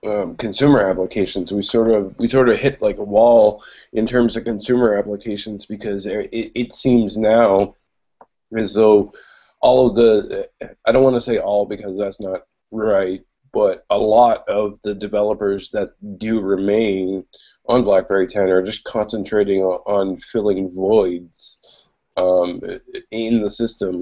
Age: 20-39